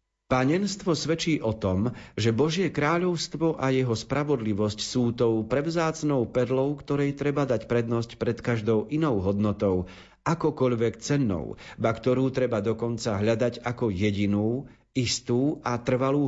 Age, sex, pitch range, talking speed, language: 40-59, male, 105-135 Hz, 125 wpm, Slovak